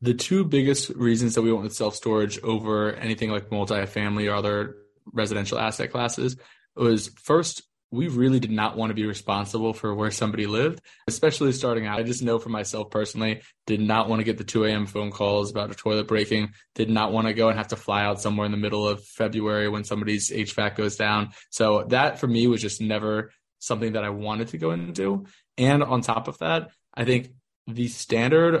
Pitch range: 105-120 Hz